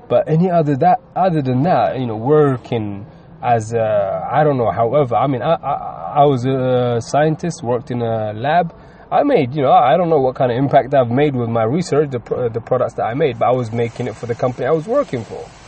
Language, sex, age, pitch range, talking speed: English, male, 20-39, 115-145 Hz, 235 wpm